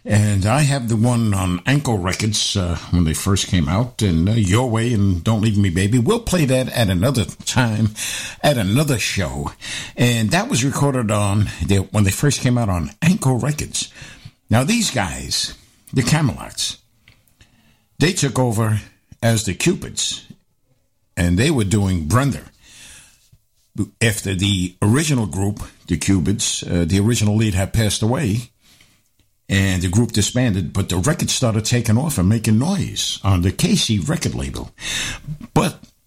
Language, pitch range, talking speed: English, 100-125 Hz, 155 wpm